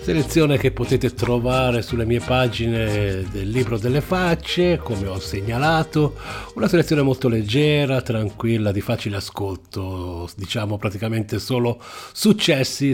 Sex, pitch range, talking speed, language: male, 110-155 Hz, 120 wpm, English